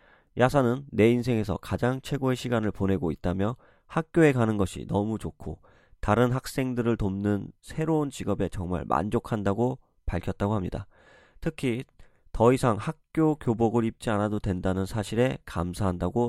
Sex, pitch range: male, 95-120 Hz